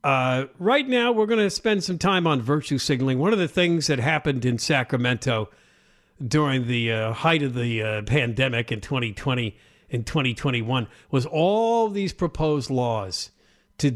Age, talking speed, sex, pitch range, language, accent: 50-69, 165 wpm, male, 125-190 Hz, English, American